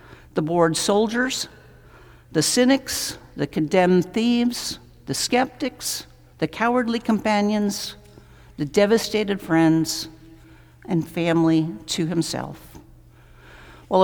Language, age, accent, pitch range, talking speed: English, 60-79, American, 150-205 Hz, 90 wpm